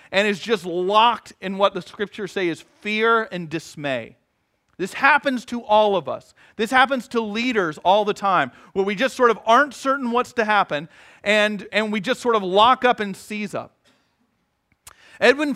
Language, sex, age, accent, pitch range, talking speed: English, male, 40-59, American, 170-230 Hz, 185 wpm